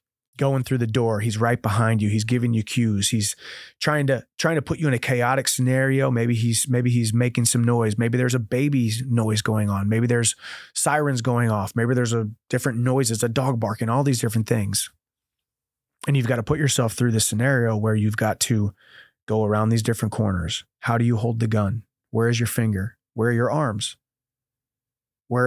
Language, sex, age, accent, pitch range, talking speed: English, male, 30-49, American, 110-130 Hz, 205 wpm